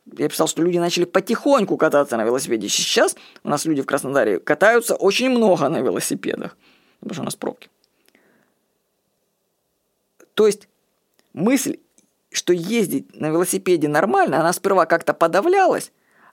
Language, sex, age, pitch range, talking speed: Russian, female, 20-39, 170-225 Hz, 135 wpm